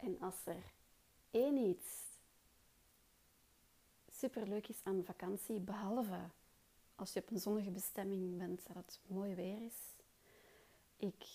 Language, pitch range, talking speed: Dutch, 185-215 Hz, 120 wpm